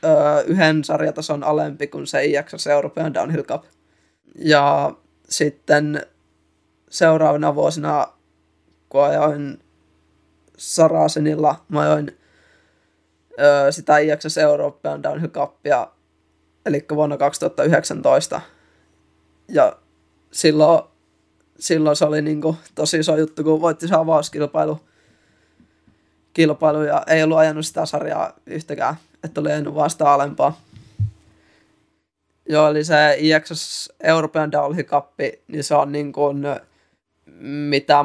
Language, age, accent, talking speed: Finnish, 20-39, native, 100 wpm